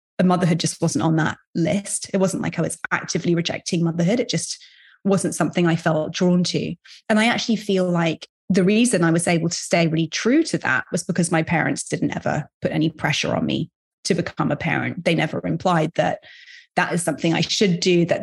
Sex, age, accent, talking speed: female, 30-49, British, 210 wpm